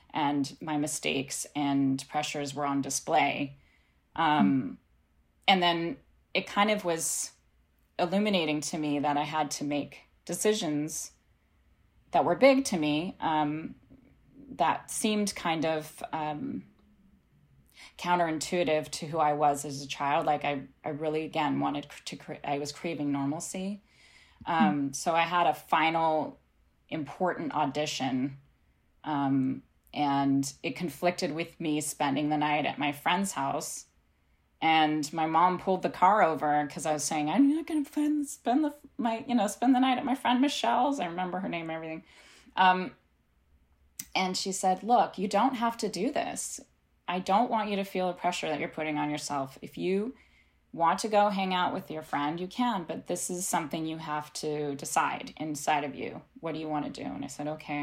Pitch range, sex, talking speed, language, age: 140-180 Hz, female, 170 wpm, English, 10-29